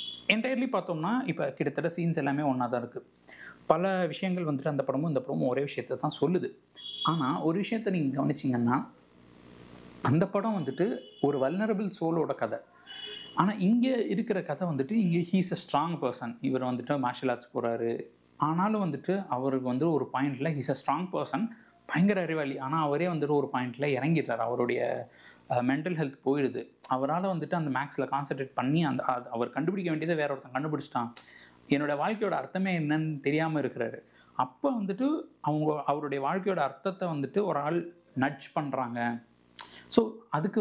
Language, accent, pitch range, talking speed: Tamil, native, 130-180 Hz, 150 wpm